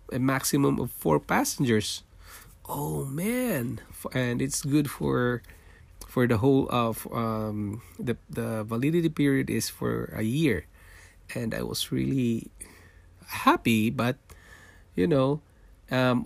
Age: 20-39